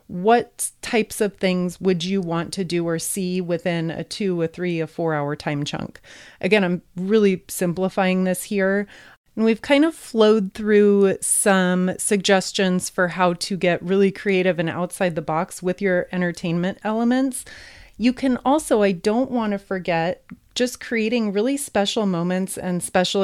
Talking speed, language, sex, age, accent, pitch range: 165 wpm, English, female, 30-49, American, 175-210 Hz